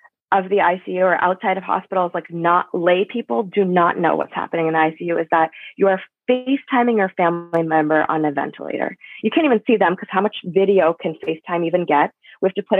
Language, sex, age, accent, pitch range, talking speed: English, female, 20-39, American, 170-220 Hz, 220 wpm